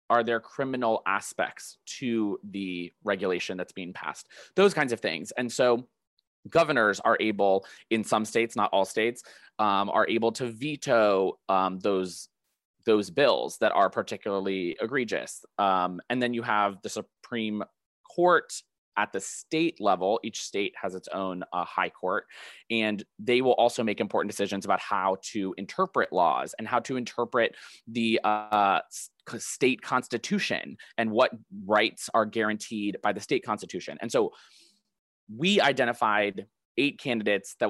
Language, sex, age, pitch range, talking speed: English, male, 20-39, 100-125 Hz, 150 wpm